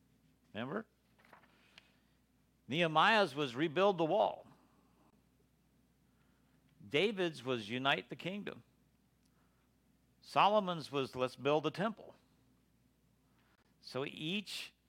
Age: 60-79